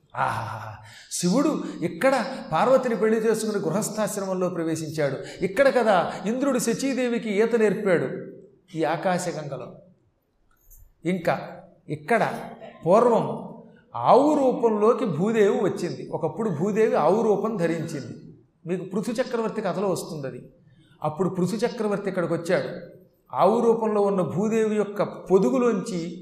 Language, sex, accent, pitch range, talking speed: Telugu, male, native, 170-220 Hz, 100 wpm